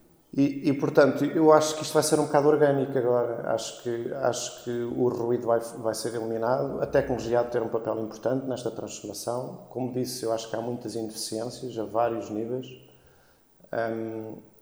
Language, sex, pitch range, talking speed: Portuguese, male, 110-125 Hz, 175 wpm